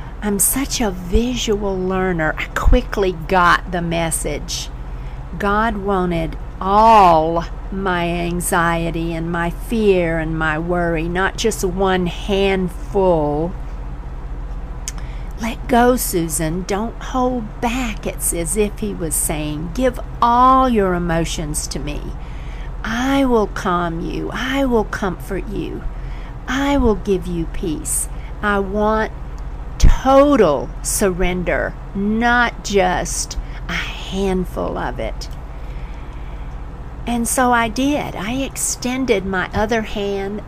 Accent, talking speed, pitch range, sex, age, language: American, 110 wpm, 165-215 Hz, female, 50-69, English